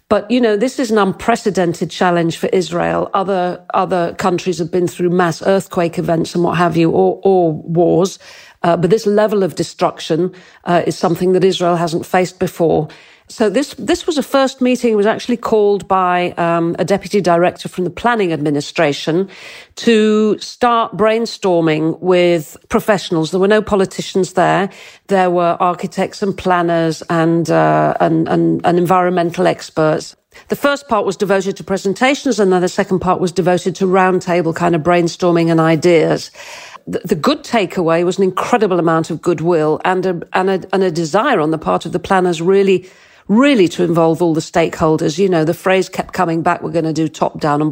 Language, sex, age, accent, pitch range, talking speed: English, female, 50-69, British, 170-210 Hz, 185 wpm